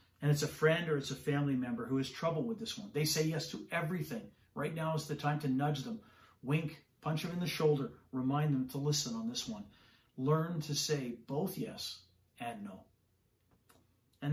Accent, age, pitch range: American, 40-59, 120-155 Hz